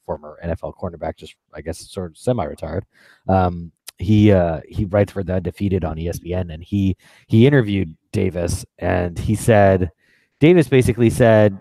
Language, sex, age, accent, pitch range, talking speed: English, male, 30-49, American, 90-125 Hz, 155 wpm